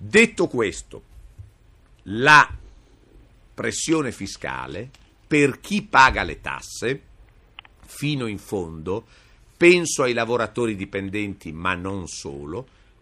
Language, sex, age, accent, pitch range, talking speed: Italian, male, 50-69, native, 105-140 Hz, 90 wpm